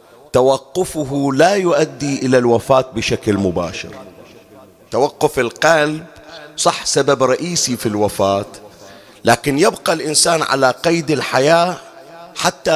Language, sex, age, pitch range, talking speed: Arabic, male, 40-59, 120-160 Hz, 100 wpm